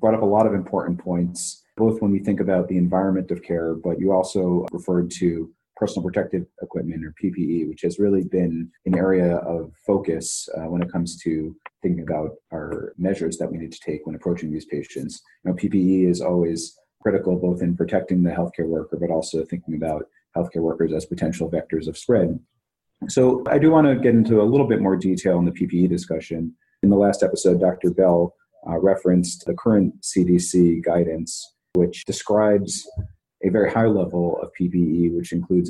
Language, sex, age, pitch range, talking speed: English, male, 30-49, 85-95 Hz, 190 wpm